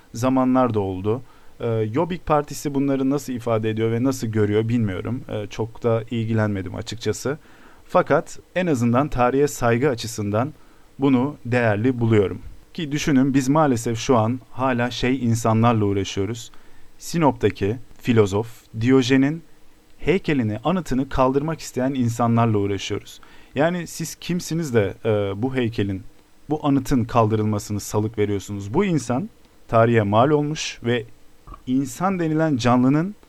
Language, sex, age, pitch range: Turkish, male, 40-59, 110-150 Hz